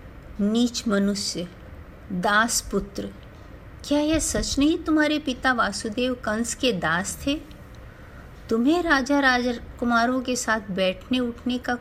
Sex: female